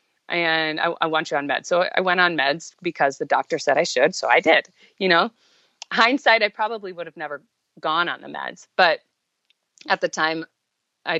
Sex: female